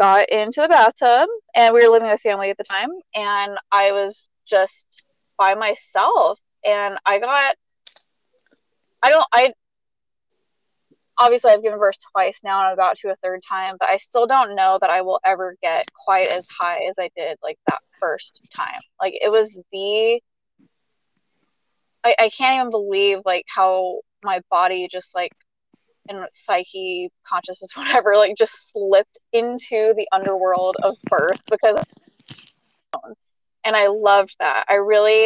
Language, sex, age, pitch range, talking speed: English, female, 20-39, 190-230 Hz, 155 wpm